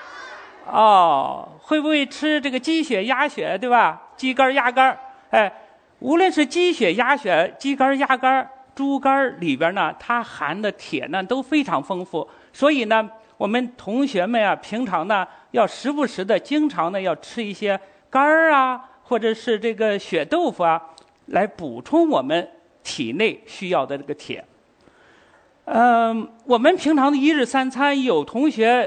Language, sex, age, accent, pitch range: Chinese, male, 50-69, native, 220-290 Hz